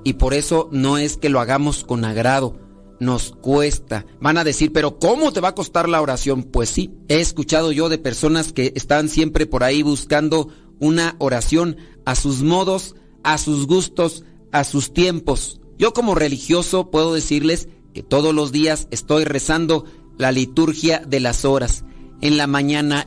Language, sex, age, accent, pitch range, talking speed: Spanish, male, 40-59, Mexican, 135-160 Hz, 170 wpm